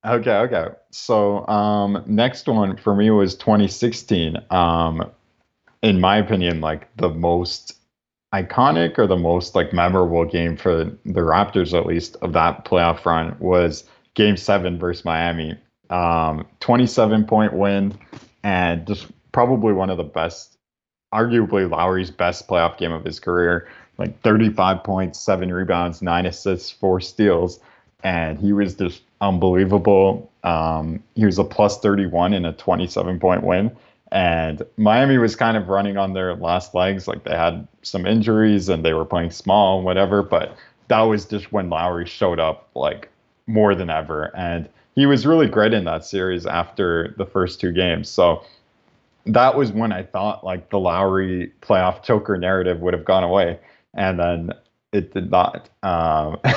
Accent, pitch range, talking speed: American, 85-105 Hz, 160 wpm